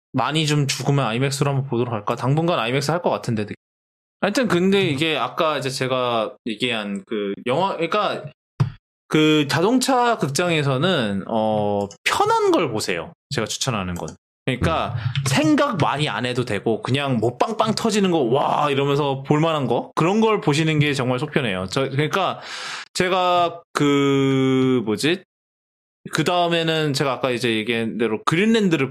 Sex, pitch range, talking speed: male, 115-185 Hz, 135 wpm